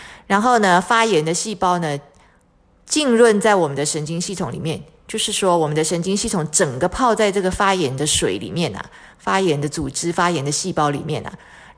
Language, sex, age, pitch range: Chinese, female, 30-49, 165-220 Hz